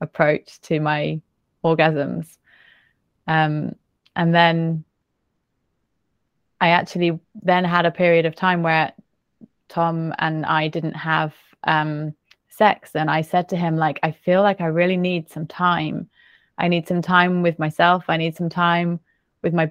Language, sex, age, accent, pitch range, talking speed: English, female, 30-49, British, 160-180 Hz, 150 wpm